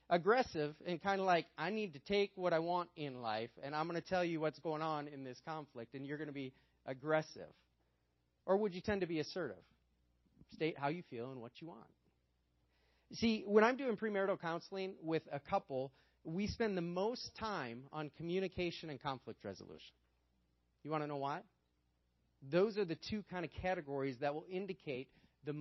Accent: American